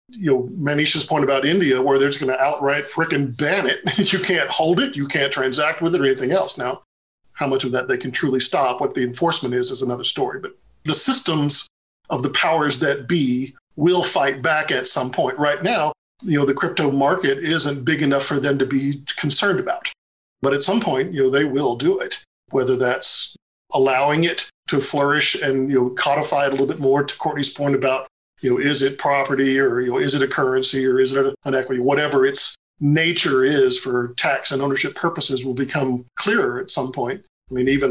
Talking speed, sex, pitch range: 215 wpm, male, 130-160 Hz